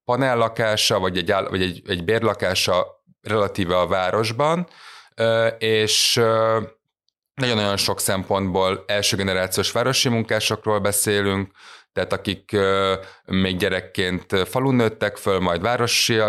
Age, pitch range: 30-49, 95-115 Hz